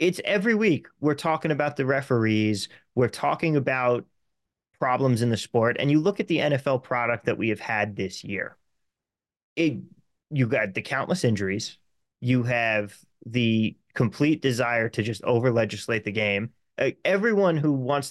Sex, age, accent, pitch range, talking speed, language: male, 30-49, American, 110-140 Hz, 160 wpm, English